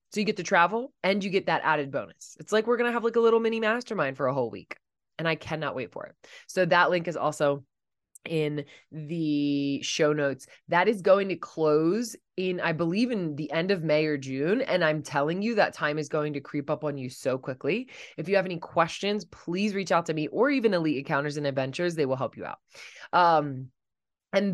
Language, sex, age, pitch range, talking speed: English, female, 20-39, 145-190 Hz, 230 wpm